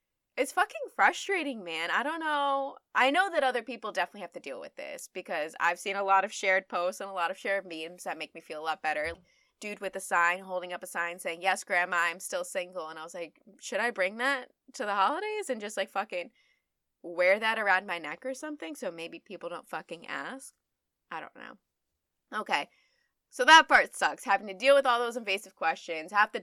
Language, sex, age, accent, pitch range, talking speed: English, female, 20-39, American, 170-250 Hz, 225 wpm